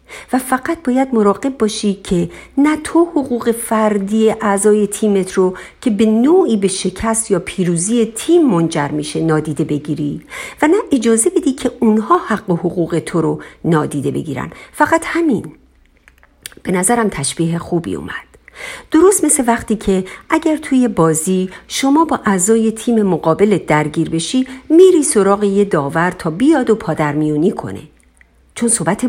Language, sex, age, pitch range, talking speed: Persian, female, 50-69, 170-260 Hz, 145 wpm